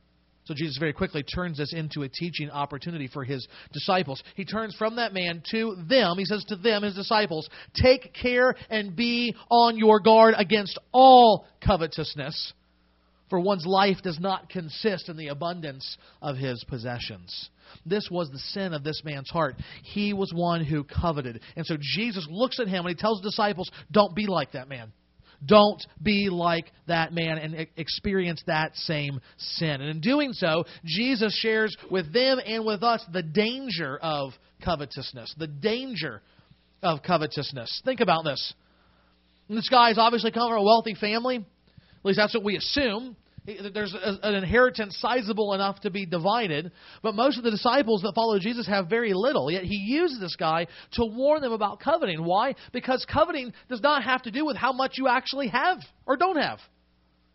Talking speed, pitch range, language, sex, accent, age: 175 wpm, 160-245 Hz, English, male, American, 40-59